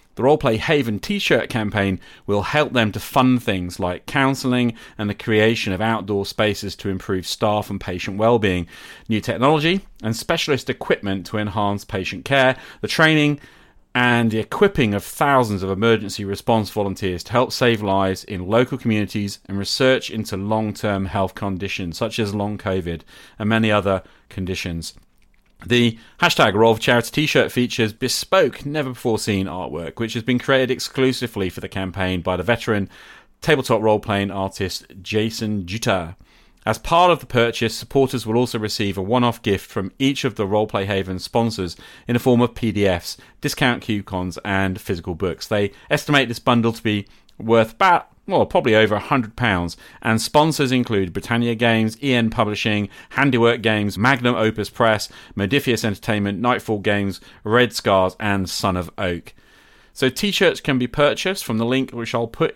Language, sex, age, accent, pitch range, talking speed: English, male, 30-49, British, 100-125 Hz, 165 wpm